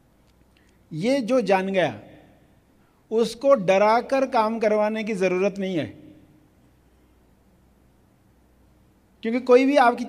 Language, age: English, 50-69